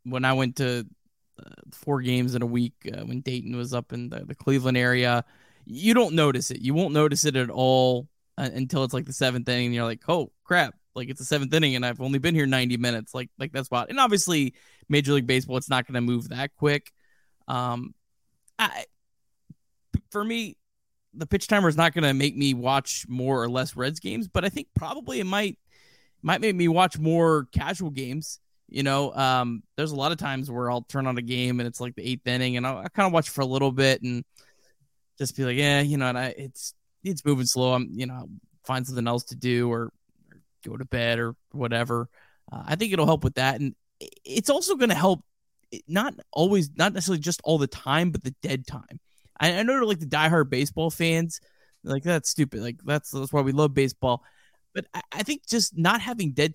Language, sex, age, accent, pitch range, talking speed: English, male, 20-39, American, 125-160 Hz, 225 wpm